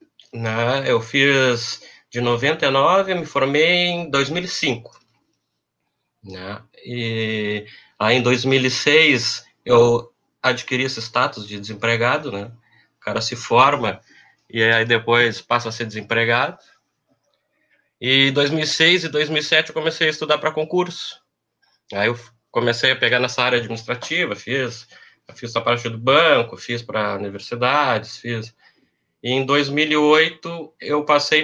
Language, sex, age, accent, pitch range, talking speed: Portuguese, male, 20-39, Brazilian, 115-150 Hz, 120 wpm